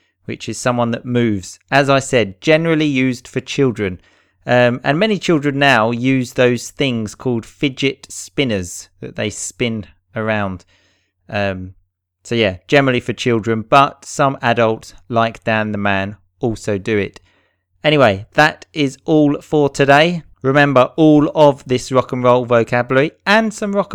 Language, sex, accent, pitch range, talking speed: English, male, British, 105-145 Hz, 150 wpm